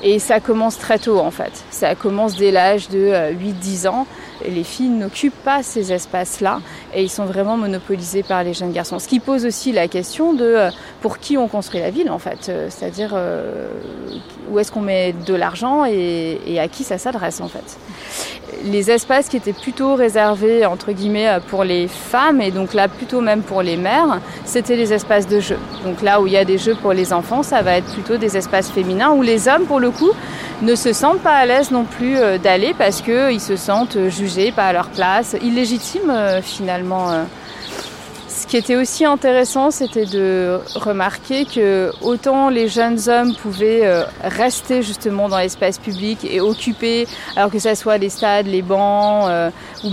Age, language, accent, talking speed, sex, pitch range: 30-49, French, French, 185 wpm, female, 190-235 Hz